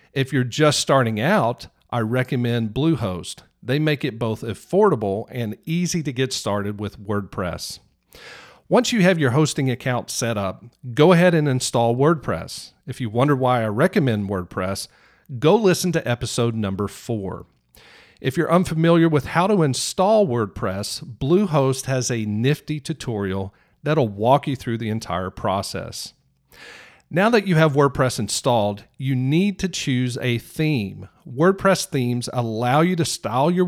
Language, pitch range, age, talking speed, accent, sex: English, 110-155 Hz, 50-69, 150 wpm, American, male